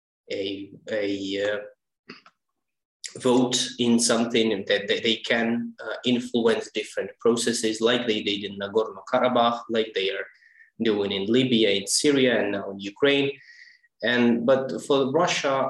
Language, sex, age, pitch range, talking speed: English, male, 20-39, 110-150 Hz, 120 wpm